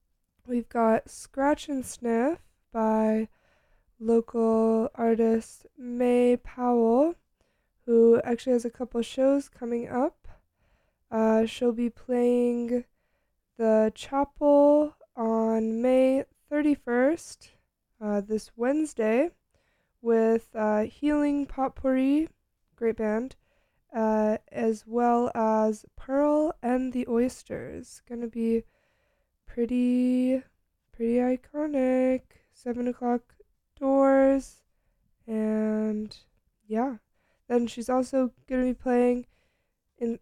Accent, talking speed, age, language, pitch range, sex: American, 95 wpm, 20-39, English, 225-260 Hz, female